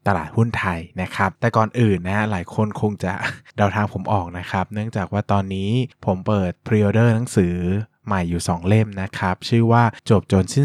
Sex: male